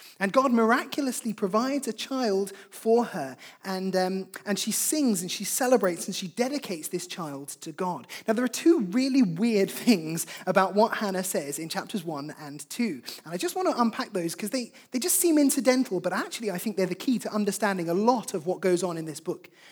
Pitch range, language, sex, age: 180-245 Hz, English, male, 20-39